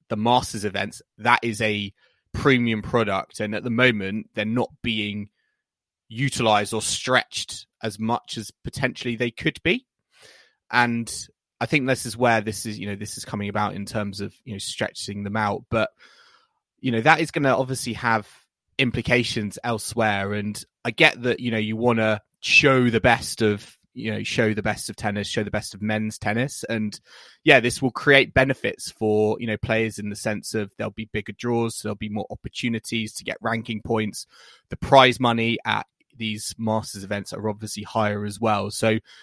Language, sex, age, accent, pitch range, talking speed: English, male, 20-39, British, 105-120 Hz, 190 wpm